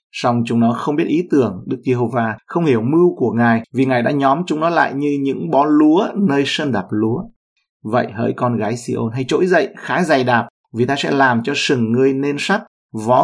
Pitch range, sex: 115-145 Hz, male